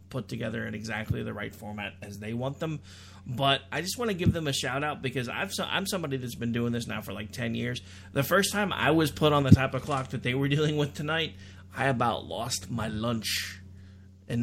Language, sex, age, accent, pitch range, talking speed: English, male, 30-49, American, 115-160 Hz, 235 wpm